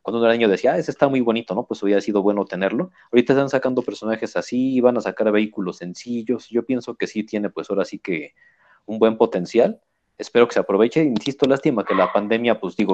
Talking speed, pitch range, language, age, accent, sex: 225 wpm, 100-125 Hz, Spanish, 40-59, Mexican, male